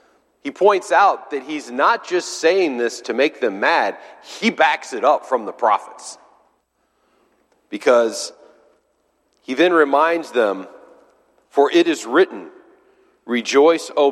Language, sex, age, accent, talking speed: English, male, 40-59, American, 130 wpm